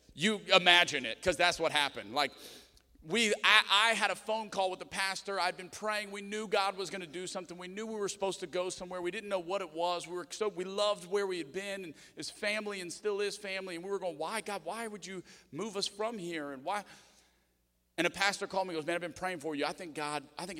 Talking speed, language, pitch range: 270 wpm, English, 155-200 Hz